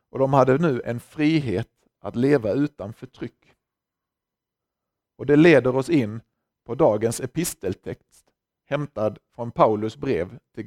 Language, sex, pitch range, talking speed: Swedish, male, 115-150 Hz, 130 wpm